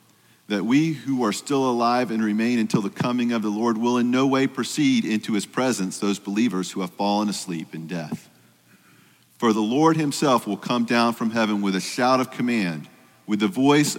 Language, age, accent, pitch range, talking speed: English, 40-59, American, 105-135 Hz, 200 wpm